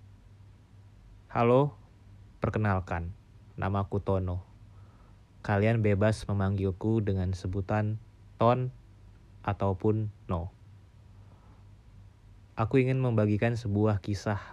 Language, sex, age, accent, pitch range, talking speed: Indonesian, male, 20-39, native, 95-105 Hz, 75 wpm